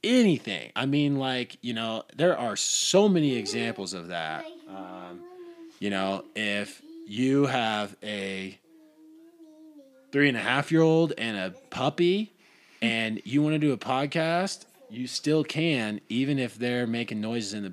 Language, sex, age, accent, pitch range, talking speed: English, male, 20-39, American, 100-145 Hz, 155 wpm